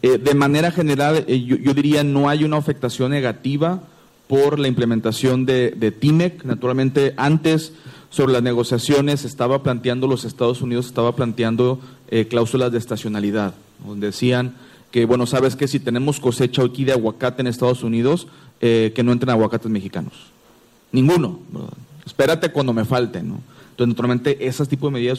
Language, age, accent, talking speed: English, 40-59, Mexican, 165 wpm